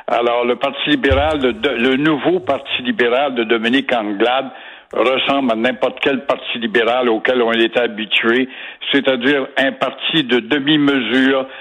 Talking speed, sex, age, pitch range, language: 140 wpm, male, 60-79, 130-155 Hz, French